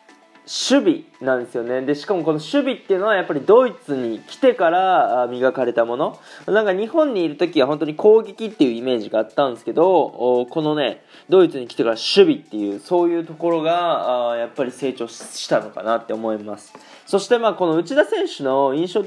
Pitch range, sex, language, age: 125-190 Hz, male, Japanese, 20-39